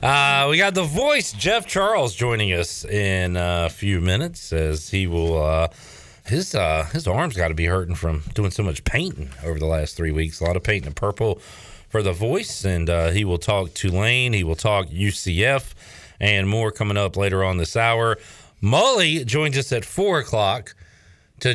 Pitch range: 95-130 Hz